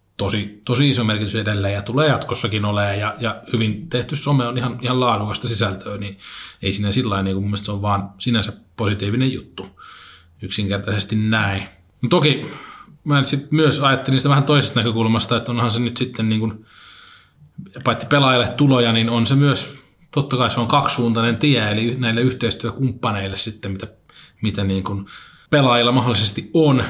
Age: 20-39